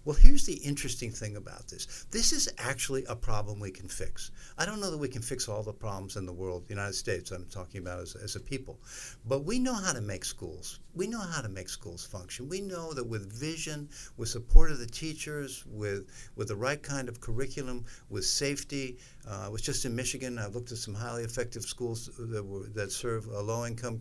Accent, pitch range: American, 110-140 Hz